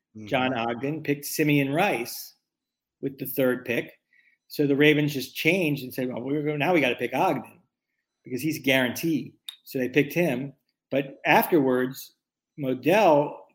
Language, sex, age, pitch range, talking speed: English, male, 40-59, 135-155 Hz, 150 wpm